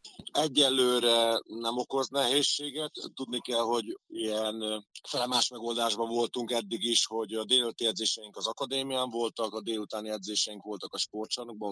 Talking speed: 135 wpm